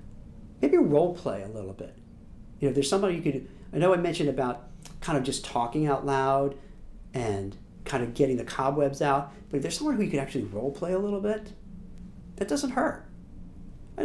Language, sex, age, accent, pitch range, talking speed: English, male, 40-59, American, 120-175 Hz, 200 wpm